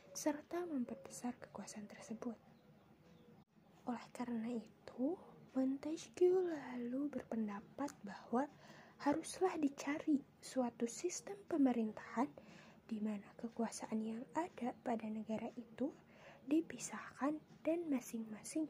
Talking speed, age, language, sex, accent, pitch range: 85 wpm, 20-39, Indonesian, female, native, 220-285 Hz